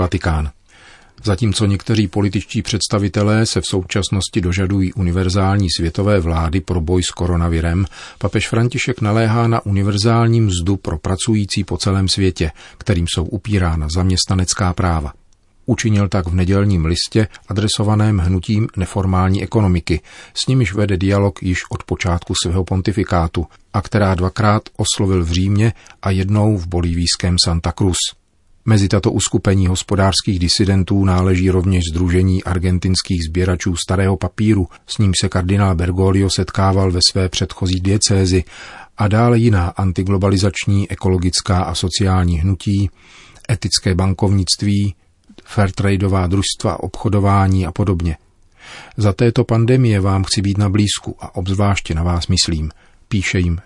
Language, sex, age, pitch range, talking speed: Czech, male, 40-59, 90-105 Hz, 125 wpm